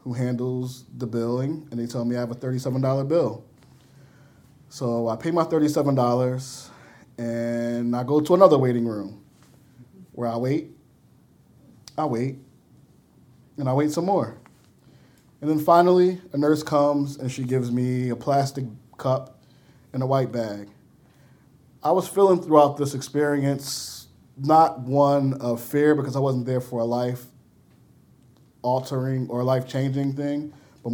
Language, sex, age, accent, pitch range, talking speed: English, male, 10-29, American, 120-140 Hz, 145 wpm